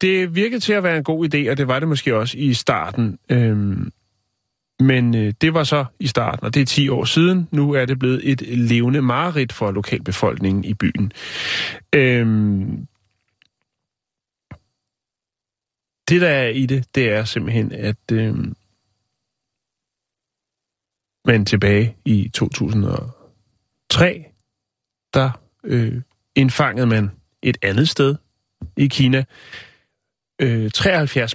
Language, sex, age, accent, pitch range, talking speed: Danish, male, 30-49, native, 110-140 Hz, 115 wpm